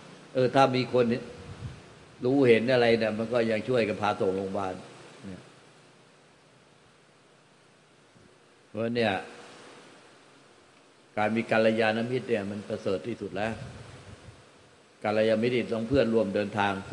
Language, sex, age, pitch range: Thai, male, 60-79, 95-115 Hz